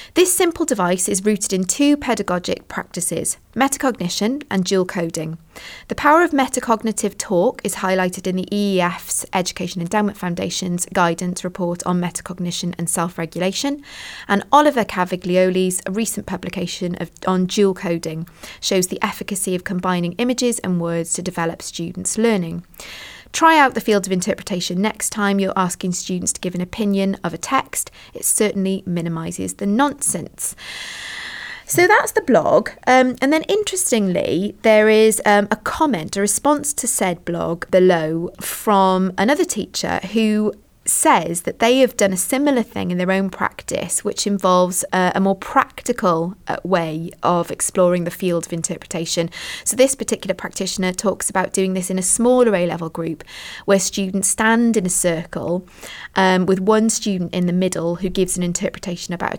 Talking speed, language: 155 wpm, English